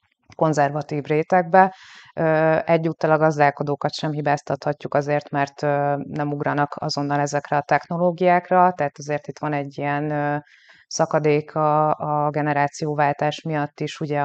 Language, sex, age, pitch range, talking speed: Hungarian, female, 30-49, 140-155 Hz, 115 wpm